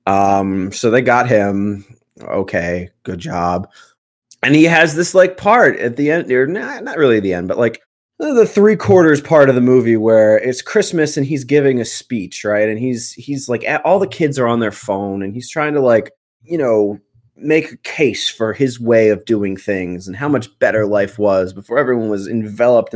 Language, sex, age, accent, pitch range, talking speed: English, male, 20-39, American, 105-155 Hz, 200 wpm